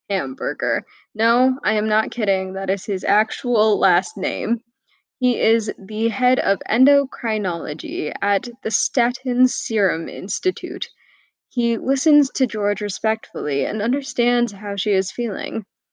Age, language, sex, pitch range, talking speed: 10-29, English, female, 195-240 Hz, 130 wpm